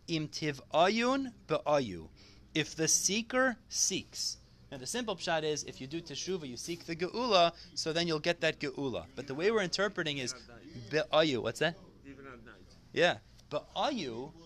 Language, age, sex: English, 30-49, male